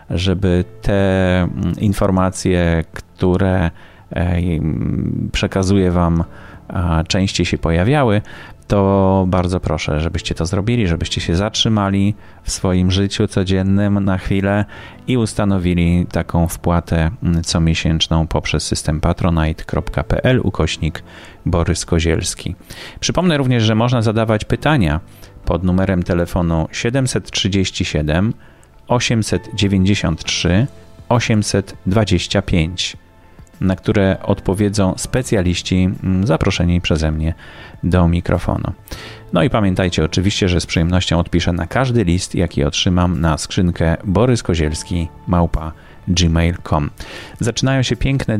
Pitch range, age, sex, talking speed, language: 85-105 Hz, 30-49, male, 95 wpm, Polish